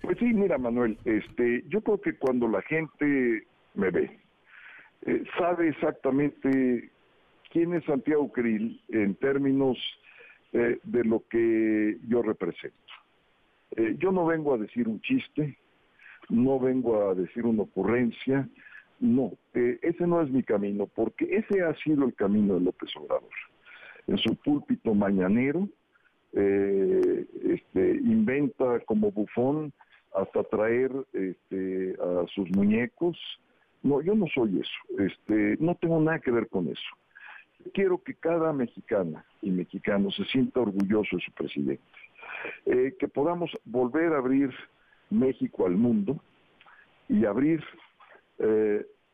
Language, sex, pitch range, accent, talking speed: Spanish, male, 115-180 Hz, Mexican, 135 wpm